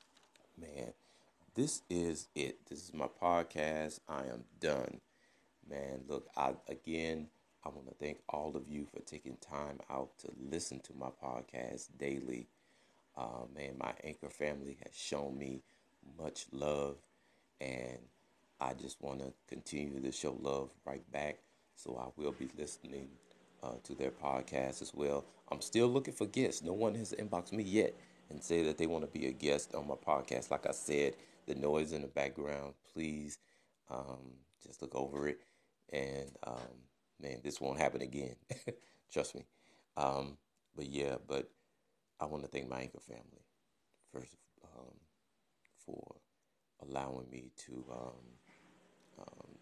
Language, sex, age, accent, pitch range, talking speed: English, male, 30-49, American, 65-75 Hz, 155 wpm